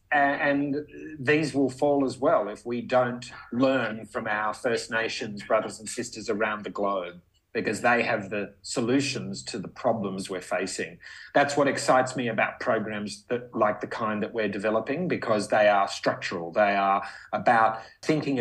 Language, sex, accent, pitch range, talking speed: English, male, Australian, 105-135 Hz, 165 wpm